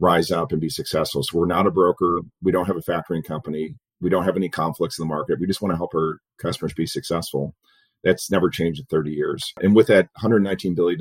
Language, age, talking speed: English, 40-59, 240 wpm